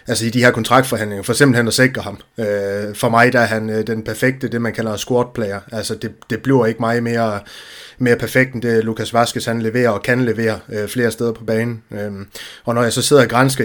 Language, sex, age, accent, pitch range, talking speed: Danish, male, 20-39, native, 110-125 Hz, 235 wpm